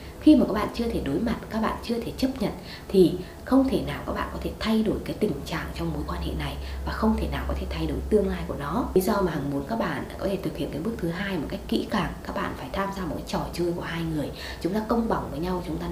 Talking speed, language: 315 wpm, Vietnamese